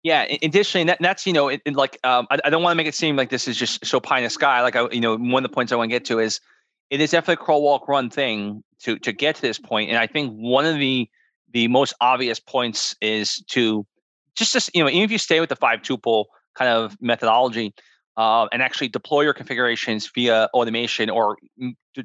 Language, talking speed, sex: English, 250 wpm, male